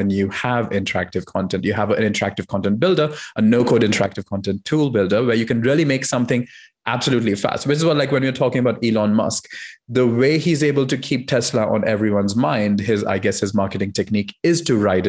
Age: 30-49